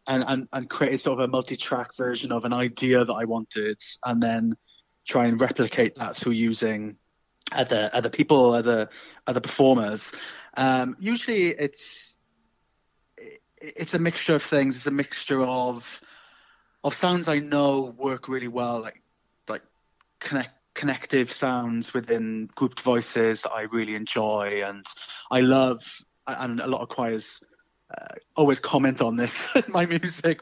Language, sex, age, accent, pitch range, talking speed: English, male, 20-39, British, 115-145 Hz, 145 wpm